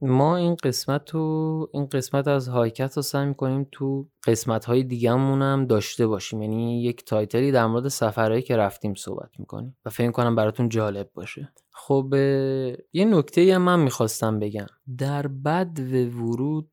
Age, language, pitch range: 20-39, Persian, 110-145 Hz